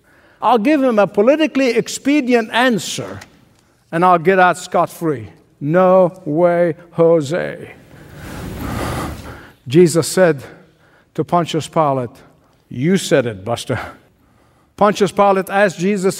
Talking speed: 105 wpm